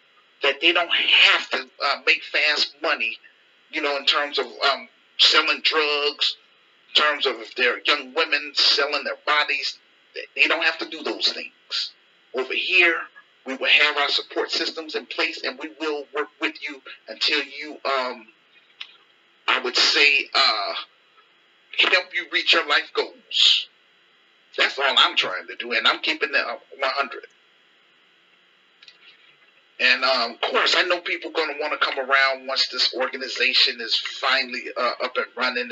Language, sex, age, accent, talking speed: English, male, 40-59, American, 160 wpm